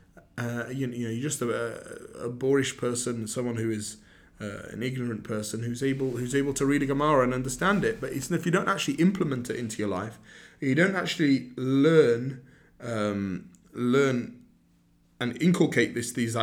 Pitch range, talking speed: 120-155 Hz, 185 wpm